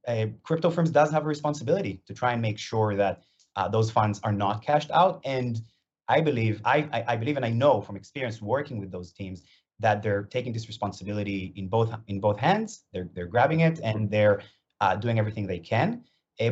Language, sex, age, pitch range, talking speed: English, male, 30-49, 100-140 Hz, 215 wpm